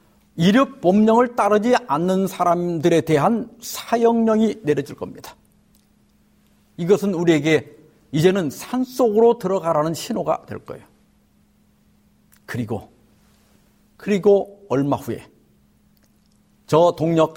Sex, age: male, 50-69